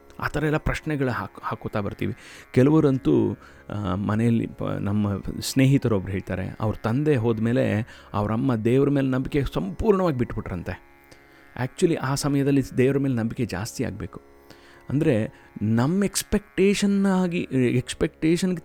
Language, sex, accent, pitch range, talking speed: Kannada, male, native, 100-145 Hz, 110 wpm